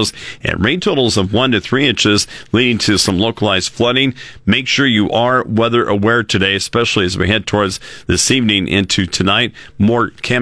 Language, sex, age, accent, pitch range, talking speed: English, male, 50-69, American, 100-125 Hz, 180 wpm